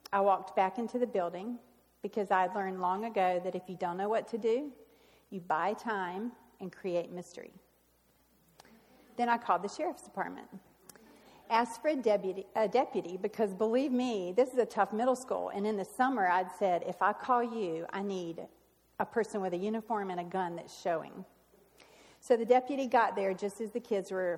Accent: American